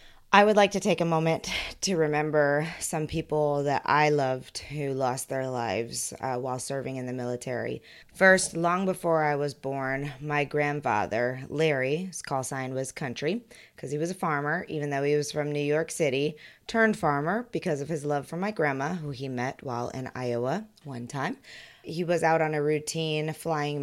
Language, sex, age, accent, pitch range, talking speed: English, female, 20-39, American, 130-155 Hz, 190 wpm